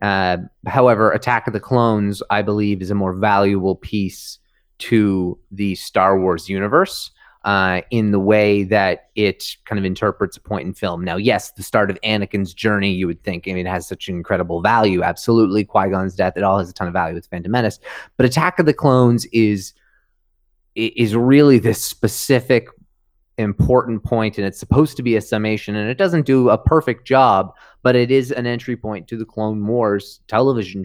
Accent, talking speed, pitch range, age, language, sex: American, 195 wpm, 100-120 Hz, 30-49, English, male